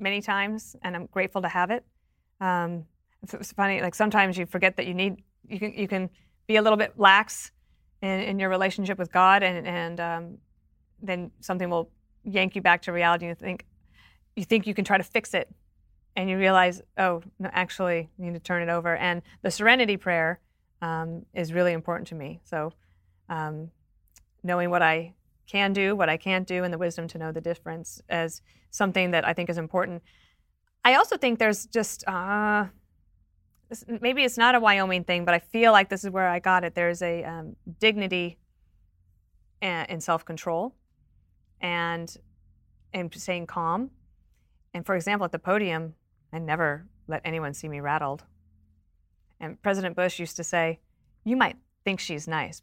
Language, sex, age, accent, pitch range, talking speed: English, female, 30-49, American, 165-195 Hz, 180 wpm